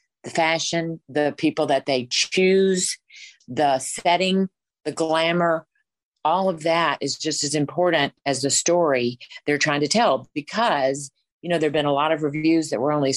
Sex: female